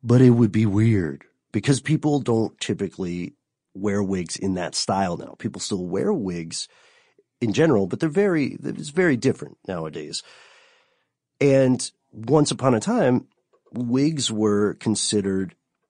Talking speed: 140 wpm